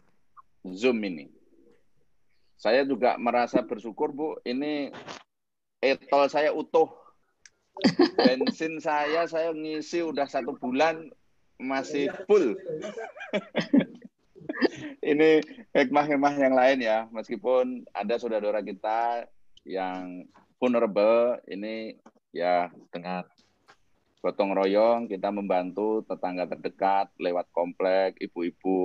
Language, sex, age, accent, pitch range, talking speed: Indonesian, male, 30-49, native, 95-140 Hz, 85 wpm